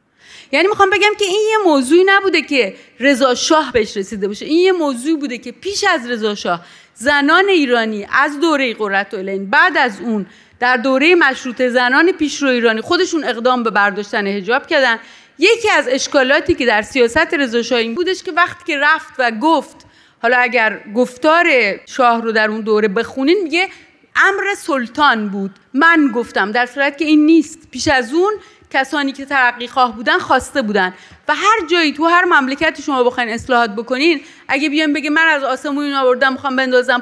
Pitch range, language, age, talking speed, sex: 235-320 Hz, Persian, 30-49, 175 wpm, female